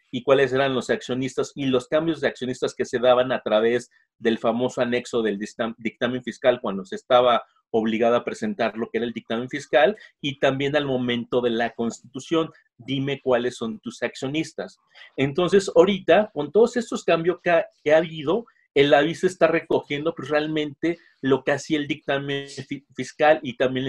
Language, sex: Spanish, male